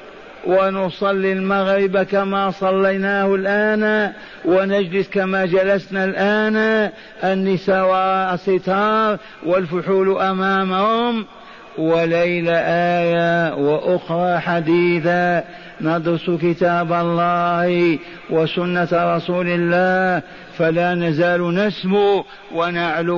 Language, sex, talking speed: Arabic, male, 70 wpm